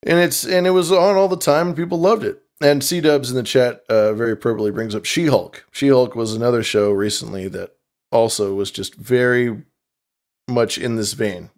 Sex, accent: male, American